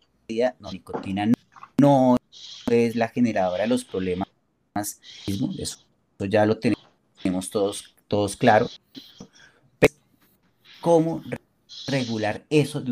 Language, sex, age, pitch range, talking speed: Spanish, male, 30-49, 115-170 Hz, 105 wpm